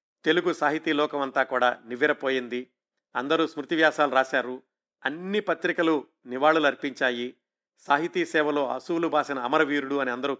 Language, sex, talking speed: Telugu, male, 120 wpm